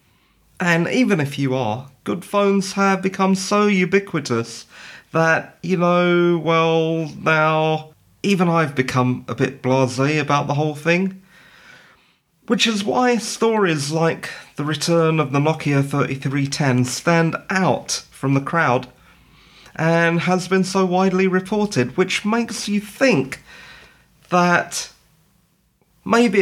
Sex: male